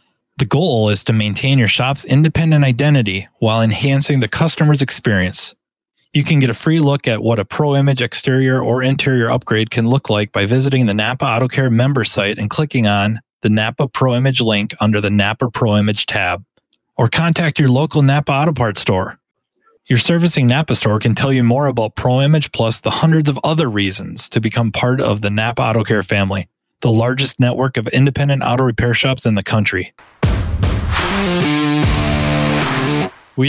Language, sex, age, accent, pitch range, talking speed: English, male, 30-49, American, 105-140 Hz, 175 wpm